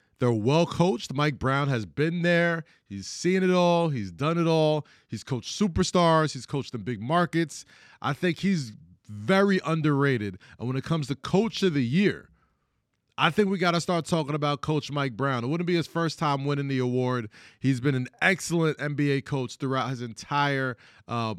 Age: 20-39